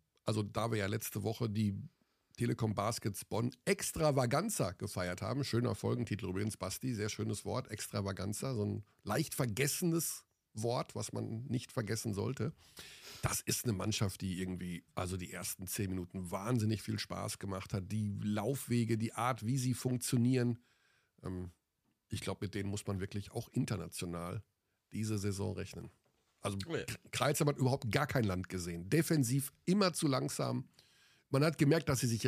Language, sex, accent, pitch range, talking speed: German, male, German, 105-140 Hz, 155 wpm